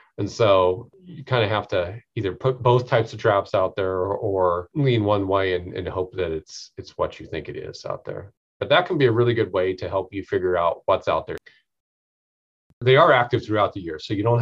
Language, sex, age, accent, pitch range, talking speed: English, male, 30-49, American, 95-115 Hz, 240 wpm